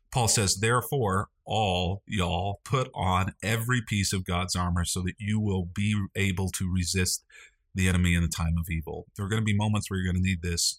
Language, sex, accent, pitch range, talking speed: English, male, American, 85-110 Hz, 215 wpm